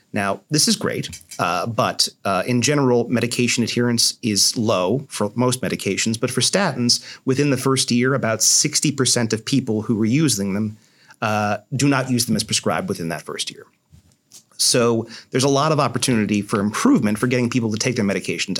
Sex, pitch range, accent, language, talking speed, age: male, 105-130 Hz, American, English, 185 wpm, 30-49